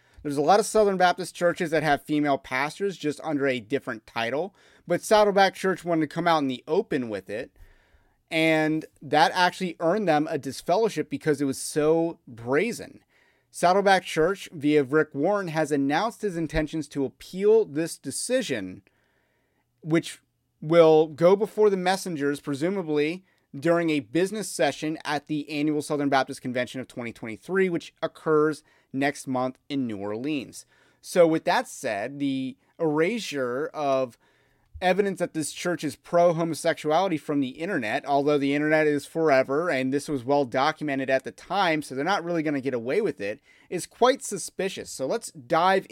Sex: male